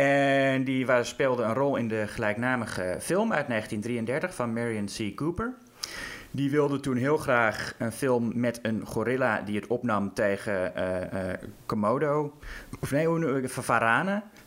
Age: 20-39